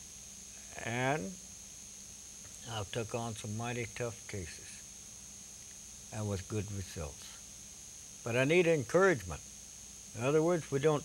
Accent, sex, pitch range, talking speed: American, male, 100-125 Hz, 115 wpm